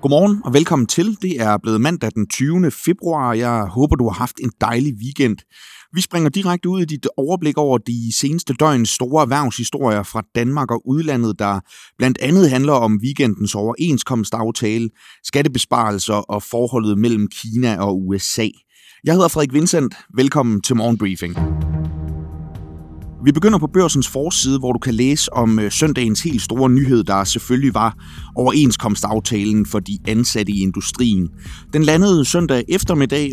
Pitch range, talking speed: 105-140 Hz, 155 wpm